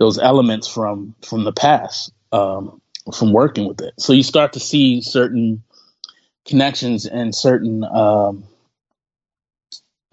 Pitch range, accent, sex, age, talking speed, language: 105-130 Hz, American, male, 30-49, 125 wpm, English